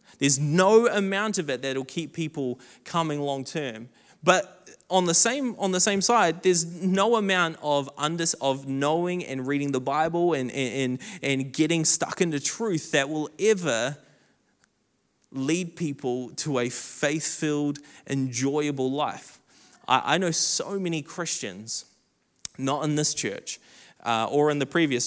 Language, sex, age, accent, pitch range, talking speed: English, male, 20-39, Australian, 150-200 Hz, 150 wpm